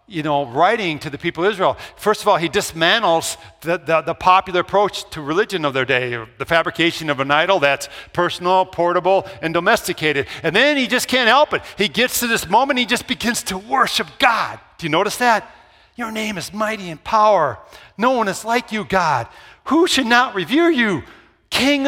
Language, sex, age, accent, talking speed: English, male, 50-69, American, 200 wpm